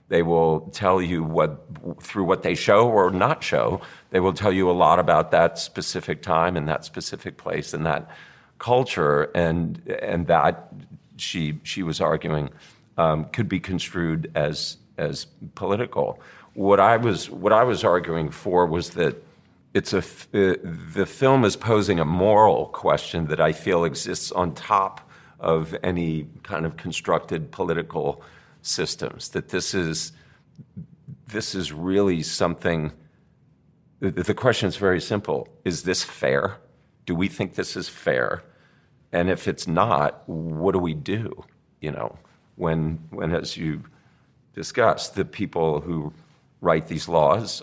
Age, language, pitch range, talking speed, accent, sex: 50-69, English, 80-105 Hz, 150 wpm, American, male